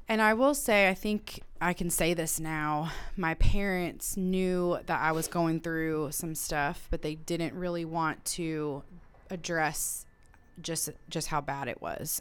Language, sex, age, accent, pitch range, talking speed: English, female, 20-39, American, 160-180 Hz, 165 wpm